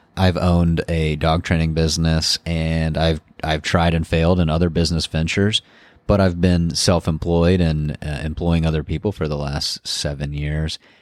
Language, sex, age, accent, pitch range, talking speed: English, male, 30-49, American, 80-95 Hz, 165 wpm